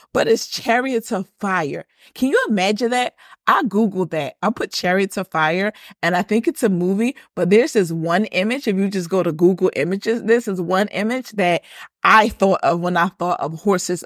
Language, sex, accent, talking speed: English, female, American, 205 wpm